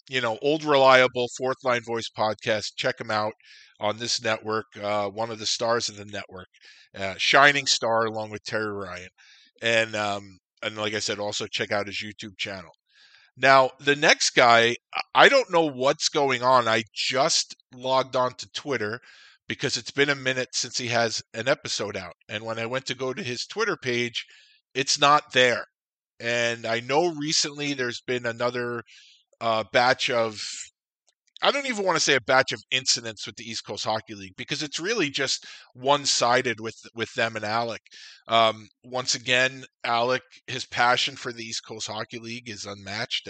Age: 50-69